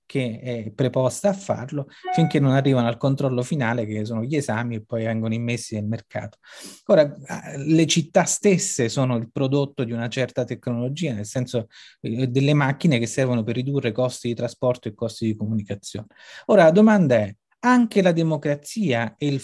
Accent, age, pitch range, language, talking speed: native, 30-49, 125-150 Hz, Italian, 175 wpm